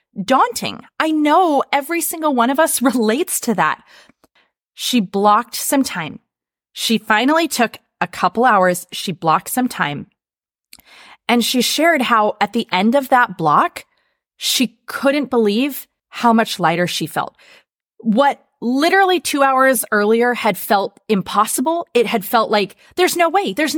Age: 20-39